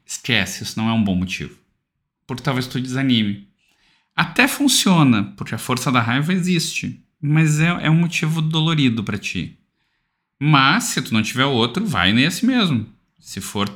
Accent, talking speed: Brazilian, 160 wpm